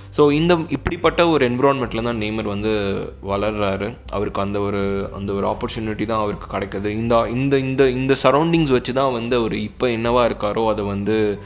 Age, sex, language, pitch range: 20-39, male, Tamil, 100-125 Hz